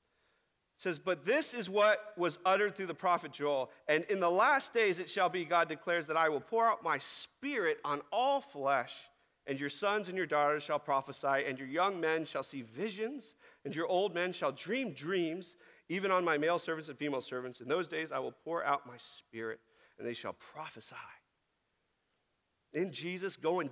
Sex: male